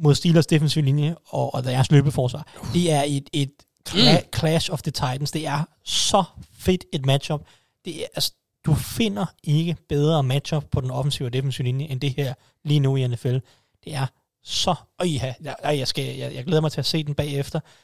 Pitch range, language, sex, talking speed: 135-155 Hz, Danish, male, 200 wpm